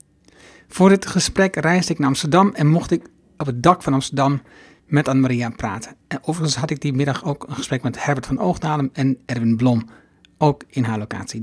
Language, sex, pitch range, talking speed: Dutch, male, 130-155 Hz, 200 wpm